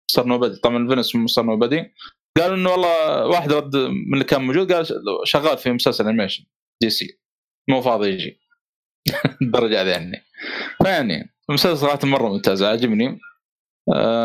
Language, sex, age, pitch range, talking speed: Arabic, male, 20-39, 120-155 Hz, 150 wpm